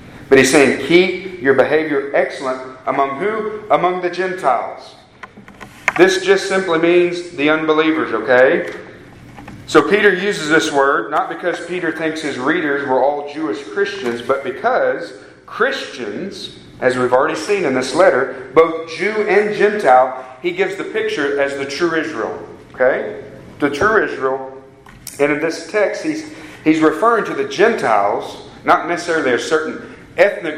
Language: English